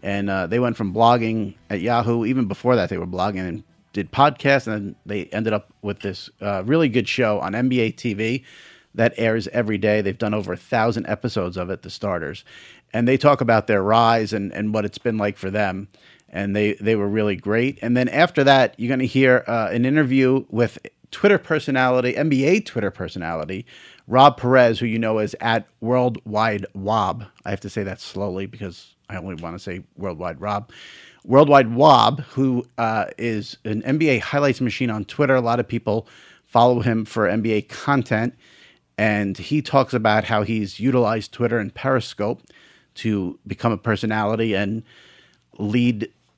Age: 40-59